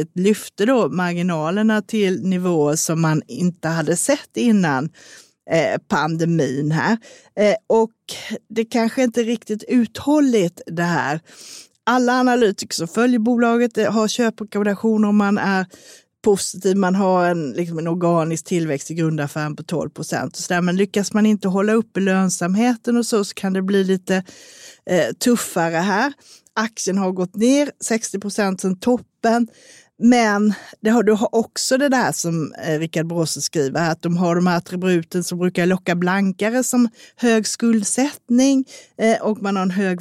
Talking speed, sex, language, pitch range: 155 wpm, female, Swedish, 175-230 Hz